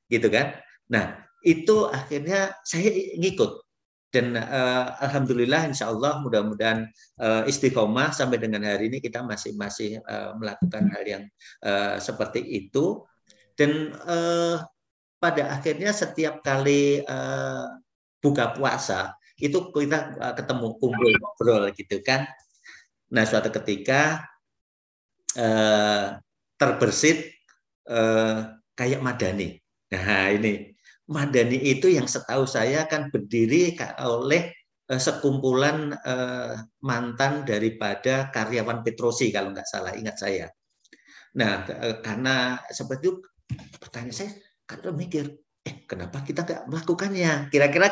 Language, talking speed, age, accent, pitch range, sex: English, 105 wpm, 50-69, Indonesian, 110-150 Hz, male